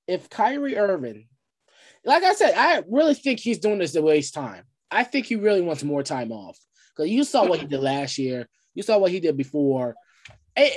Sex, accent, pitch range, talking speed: male, American, 140-225 Hz, 210 wpm